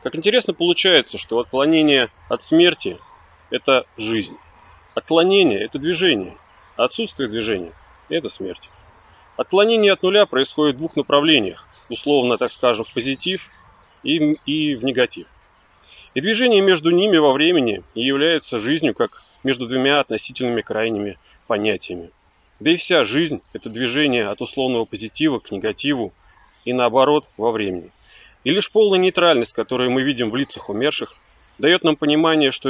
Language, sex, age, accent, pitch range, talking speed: Russian, male, 30-49, native, 115-175 Hz, 145 wpm